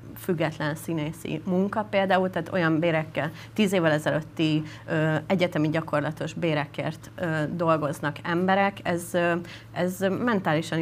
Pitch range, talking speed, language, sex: 150-185 Hz, 100 wpm, Hungarian, female